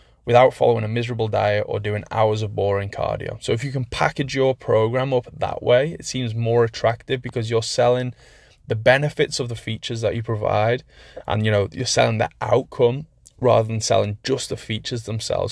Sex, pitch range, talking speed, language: male, 105-120 Hz, 195 wpm, English